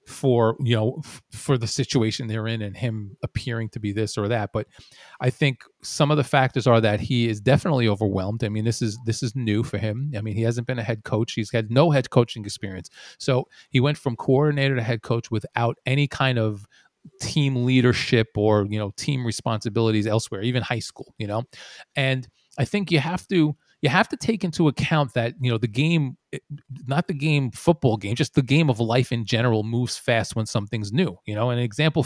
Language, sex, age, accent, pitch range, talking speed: English, male, 30-49, American, 115-145 Hz, 215 wpm